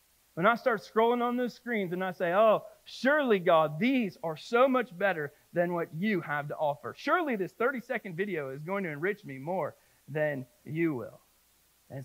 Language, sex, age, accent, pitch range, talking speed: English, male, 40-59, American, 150-210 Hz, 190 wpm